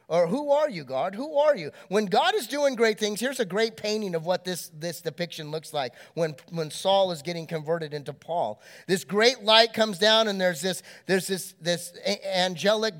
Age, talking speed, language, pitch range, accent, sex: 30-49, 210 wpm, English, 190-275 Hz, American, male